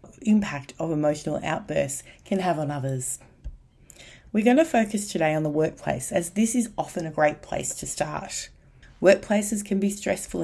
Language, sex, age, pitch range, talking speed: English, female, 30-49, 145-200 Hz, 165 wpm